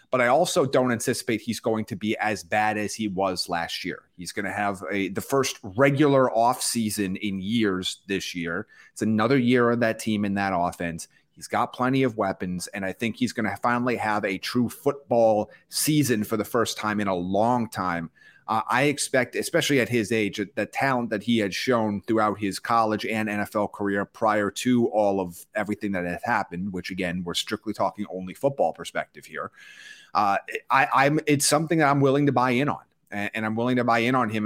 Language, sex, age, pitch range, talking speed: English, male, 30-49, 100-125 Hz, 205 wpm